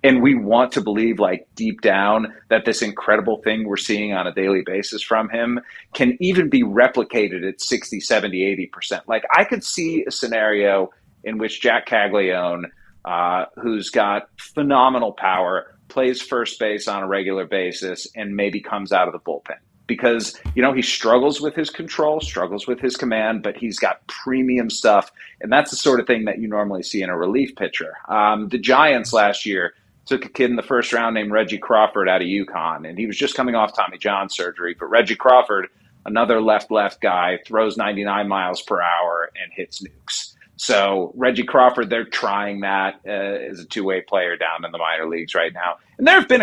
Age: 40-59